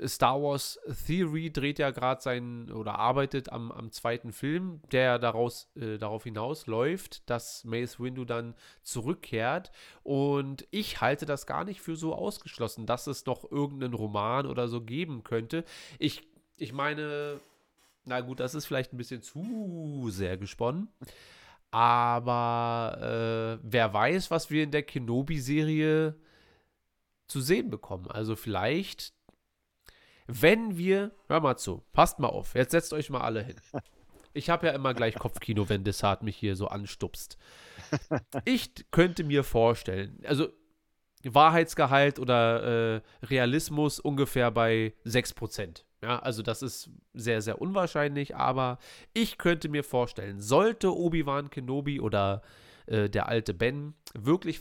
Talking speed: 140 wpm